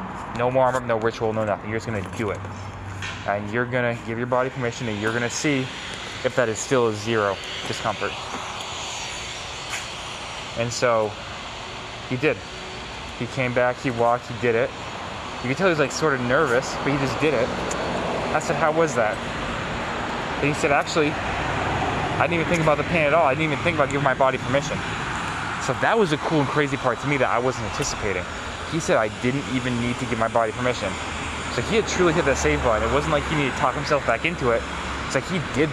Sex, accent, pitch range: male, American, 105-130 Hz